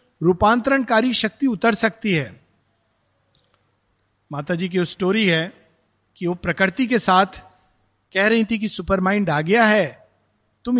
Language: Hindi